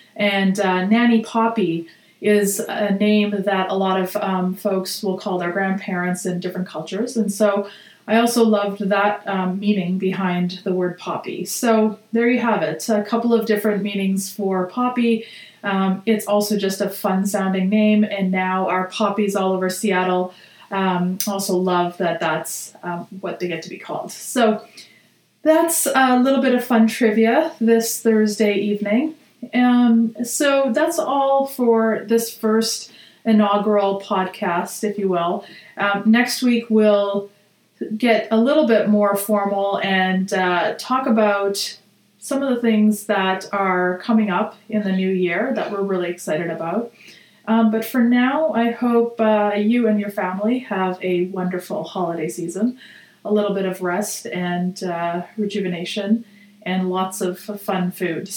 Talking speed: 155 wpm